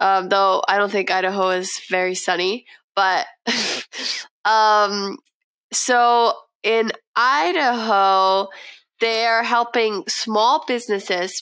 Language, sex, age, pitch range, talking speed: English, female, 20-39, 195-230 Hz, 95 wpm